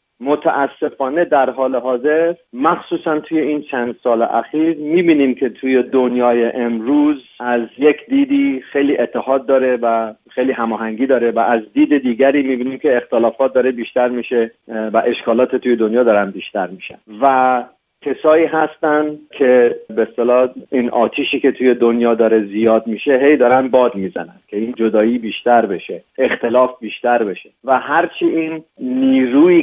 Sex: male